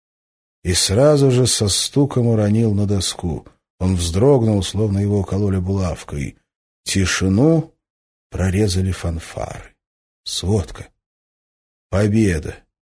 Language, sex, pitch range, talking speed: Russian, male, 95-110 Hz, 90 wpm